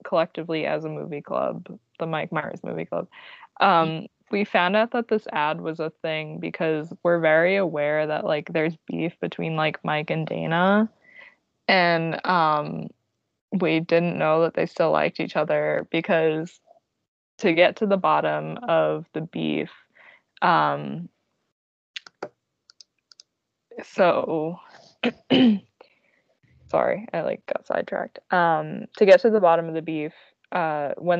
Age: 20-39